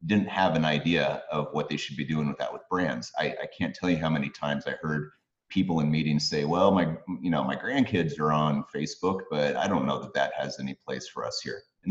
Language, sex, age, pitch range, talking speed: English, male, 30-49, 75-90 Hz, 250 wpm